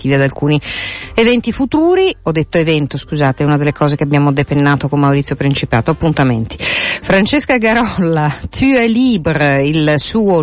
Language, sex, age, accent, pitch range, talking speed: Italian, female, 50-69, native, 140-220 Hz, 145 wpm